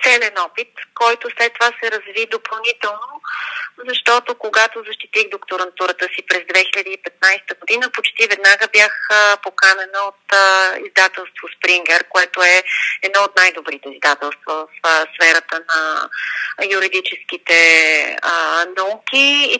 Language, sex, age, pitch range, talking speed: Bulgarian, female, 30-49, 185-260 Hz, 105 wpm